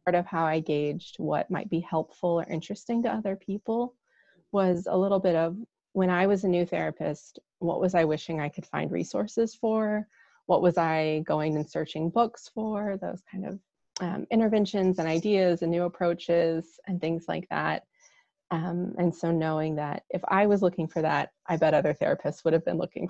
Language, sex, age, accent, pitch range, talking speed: English, female, 30-49, American, 165-210 Hz, 195 wpm